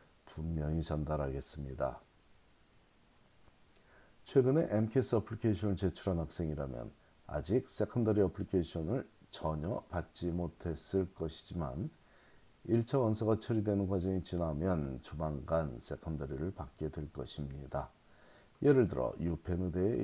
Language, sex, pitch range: Korean, male, 80-105 Hz